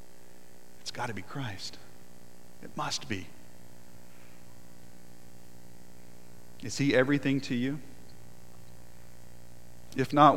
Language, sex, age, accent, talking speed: English, male, 40-59, American, 80 wpm